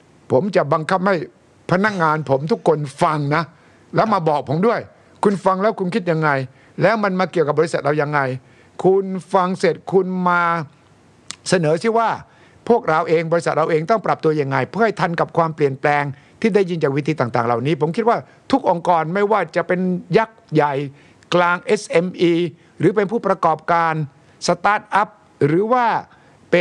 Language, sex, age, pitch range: Thai, male, 60-79, 150-200 Hz